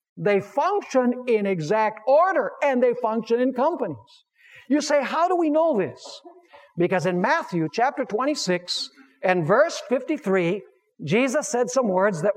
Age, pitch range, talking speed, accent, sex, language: 60-79, 200-300 Hz, 145 wpm, American, male, English